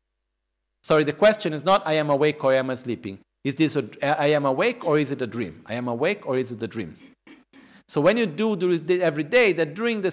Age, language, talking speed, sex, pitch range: 50-69, Italian, 250 wpm, male, 125-190 Hz